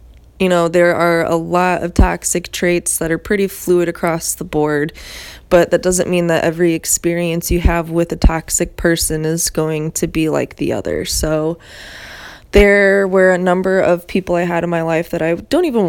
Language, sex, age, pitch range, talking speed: English, female, 20-39, 160-180 Hz, 195 wpm